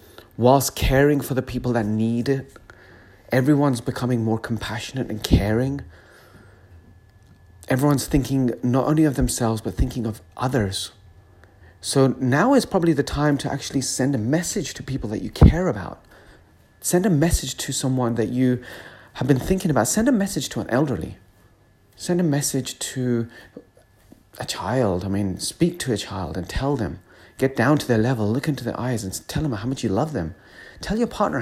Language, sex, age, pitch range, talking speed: English, male, 30-49, 100-145 Hz, 180 wpm